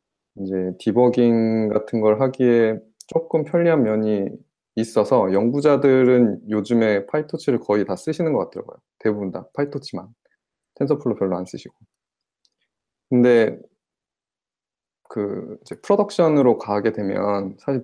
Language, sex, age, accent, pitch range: Korean, male, 20-39, native, 105-135 Hz